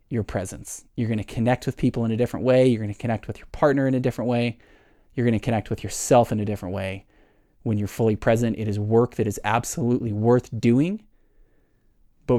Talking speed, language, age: 225 wpm, English, 20-39